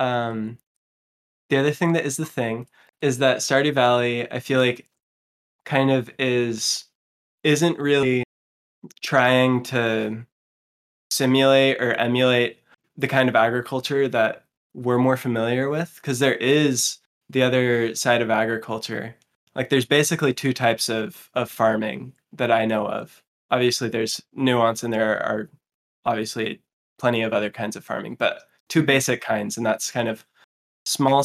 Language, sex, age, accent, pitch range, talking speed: English, male, 20-39, American, 115-135 Hz, 145 wpm